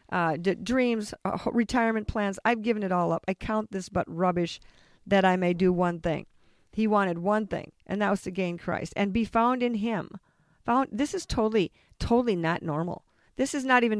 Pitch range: 180-225 Hz